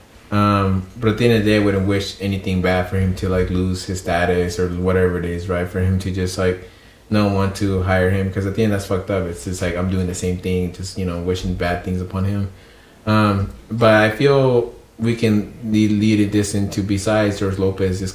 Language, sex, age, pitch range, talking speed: English, male, 20-39, 95-105 Hz, 240 wpm